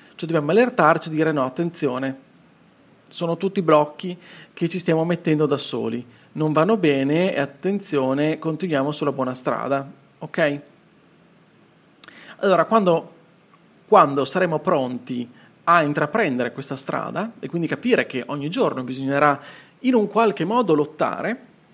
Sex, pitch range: male, 145-195 Hz